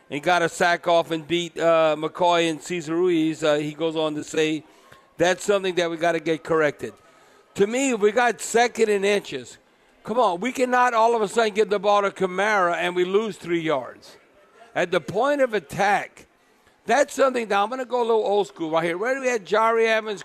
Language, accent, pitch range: English, American, 175-225 Hz